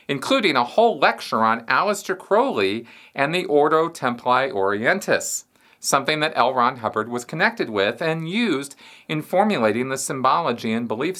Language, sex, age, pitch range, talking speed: English, male, 40-59, 120-170 Hz, 150 wpm